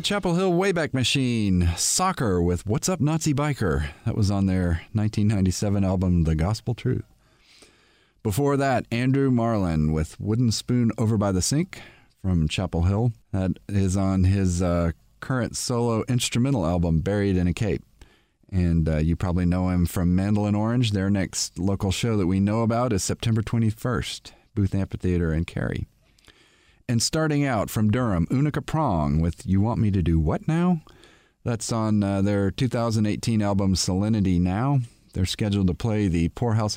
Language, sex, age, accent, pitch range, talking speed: English, male, 40-59, American, 95-125 Hz, 165 wpm